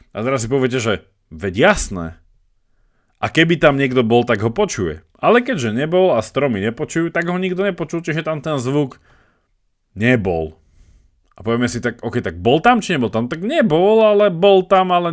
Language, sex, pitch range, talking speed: Slovak, male, 105-150 Hz, 185 wpm